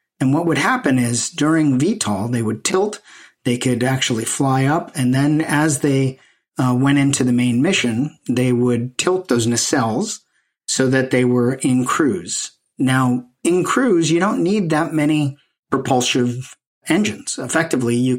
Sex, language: male, English